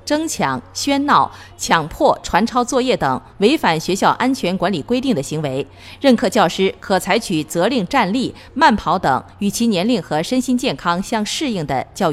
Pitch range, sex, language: 155-240 Hz, female, Chinese